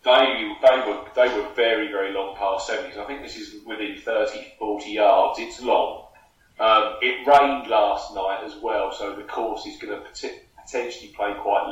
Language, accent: English, British